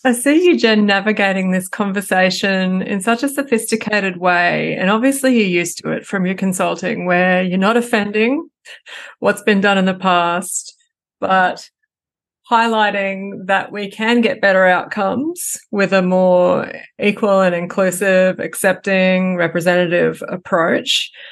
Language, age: English, 30-49